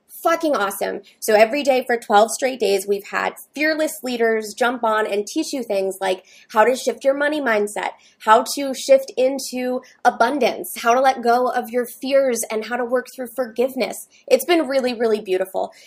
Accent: American